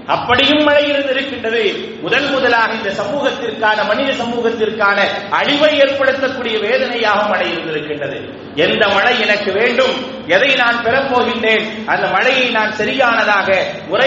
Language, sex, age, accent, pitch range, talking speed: English, male, 30-49, Indian, 220-275 Hz, 150 wpm